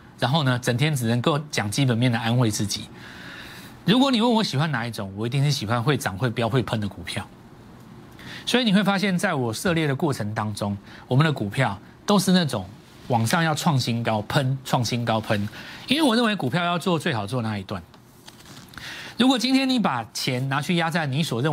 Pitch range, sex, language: 115-175 Hz, male, Chinese